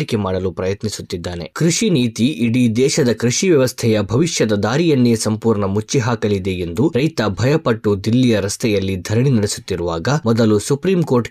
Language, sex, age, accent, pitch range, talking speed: Kannada, male, 20-39, native, 105-150 Hz, 125 wpm